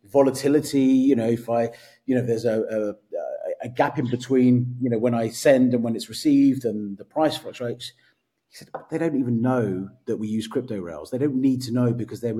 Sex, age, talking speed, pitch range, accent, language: male, 30-49, 220 wpm, 115-135 Hz, British, English